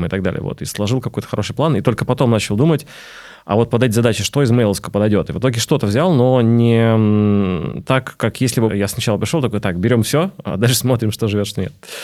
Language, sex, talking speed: Russian, male, 235 wpm